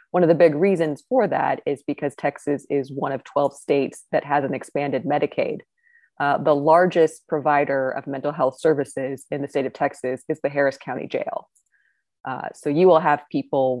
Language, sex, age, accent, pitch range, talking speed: English, female, 20-39, American, 135-170 Hz, 190 wpm